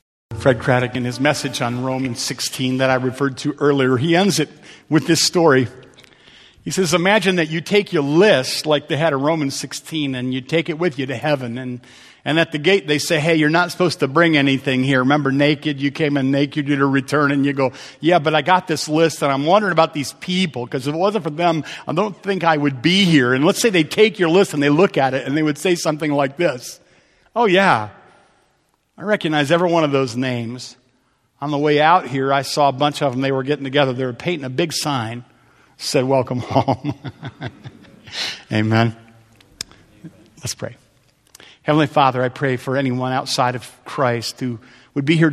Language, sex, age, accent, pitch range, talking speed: English, male, 50-69, American, 130-160 Hz, 215 wpm